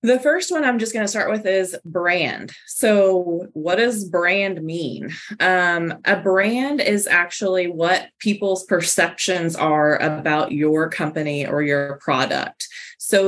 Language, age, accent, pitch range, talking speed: English, 20-39, American, 165-195 Hz, 145 wpm